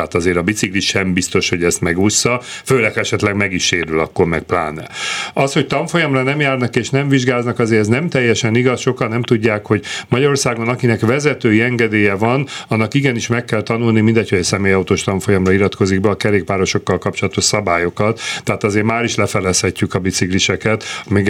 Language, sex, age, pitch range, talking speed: Hungarian, male, 40-59, 95-120 Hz, 180 wpm